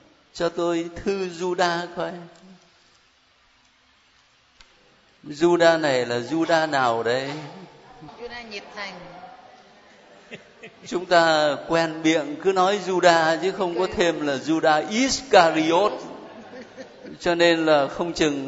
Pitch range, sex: 160-200 Hz, male